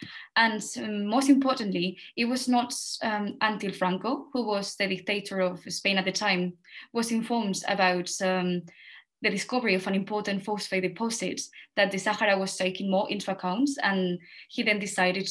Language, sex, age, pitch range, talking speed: English, female, 20-39, 190-235 Hz, 160 wpm